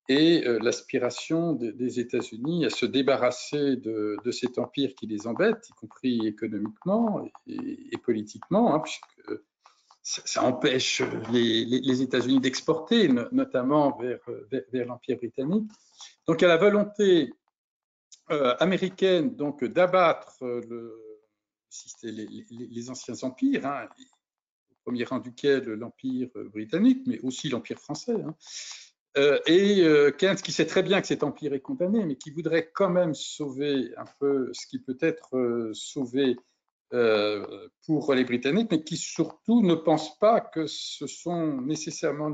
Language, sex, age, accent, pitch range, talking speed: French, male, 50-69, French, 125-180 Hz, 145 wpm